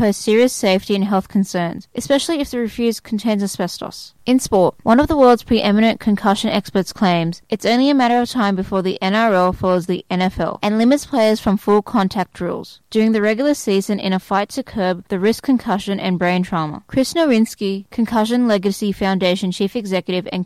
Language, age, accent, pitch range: English, 10-29, Australian, 190-230 Hz